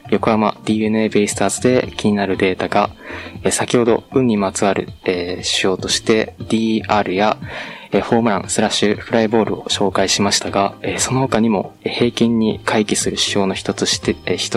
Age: 20-39